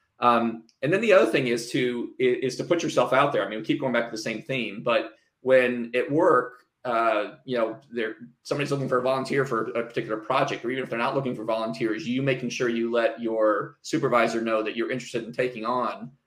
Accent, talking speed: American, 230 wpm